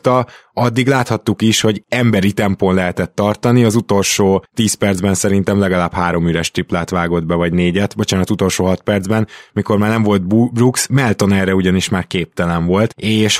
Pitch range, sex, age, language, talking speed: 95-115 Hz, male, 20-39, Hungarian, 165 wpm